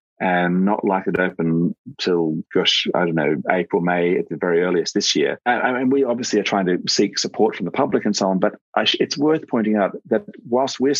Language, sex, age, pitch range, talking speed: English, male, 40-59, 100-130 Hz, 240 wpm